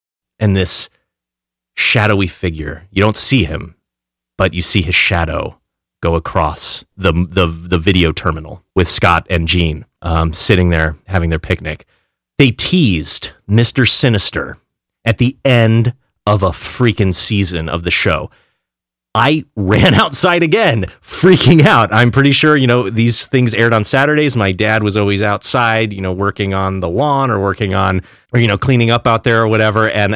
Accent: American